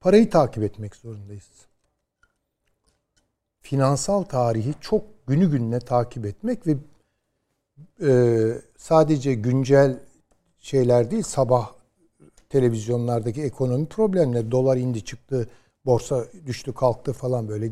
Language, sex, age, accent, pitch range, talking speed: Turkish, male, 60-79, native, 105-150 Hz, 95 wpm